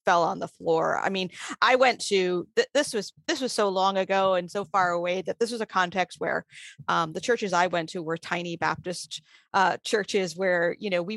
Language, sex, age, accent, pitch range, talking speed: English, female, 30-49, American, 175-220 Hz, 220 wpm